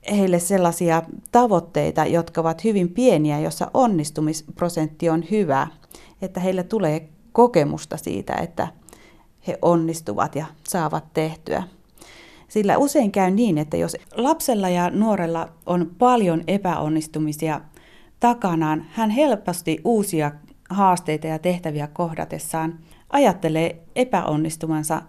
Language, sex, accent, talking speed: Finnish, female, native, 105 wpm